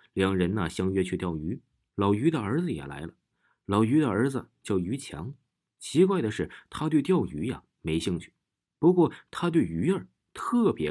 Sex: male